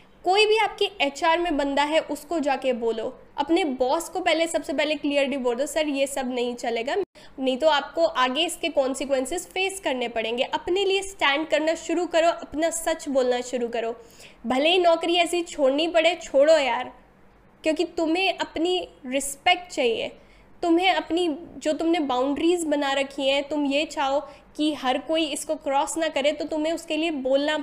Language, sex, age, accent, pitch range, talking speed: Hindi, female, 10-29, native, 275-335 Hz, 175 wpm